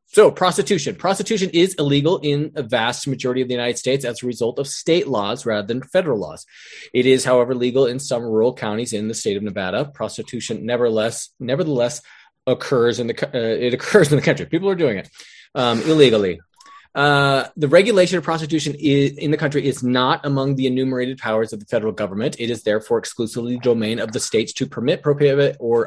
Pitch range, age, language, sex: 115-145 Hz, 20-39, English, male